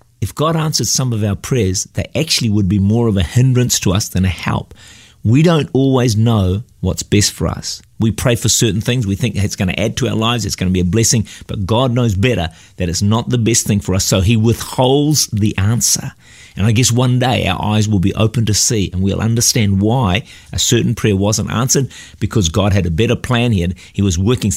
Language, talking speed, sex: English, 235 wpm, male